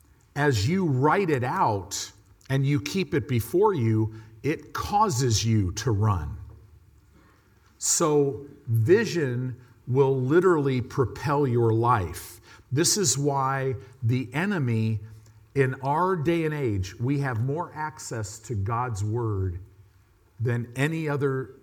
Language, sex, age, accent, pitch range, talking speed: English, male, 50-69, American, 105-140 Hz, 120 wpm